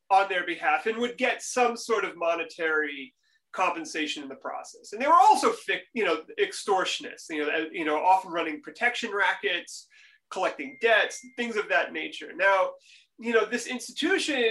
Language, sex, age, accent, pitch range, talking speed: Turkish, male, 30-49, American, 190-300 Hz, 165 wpm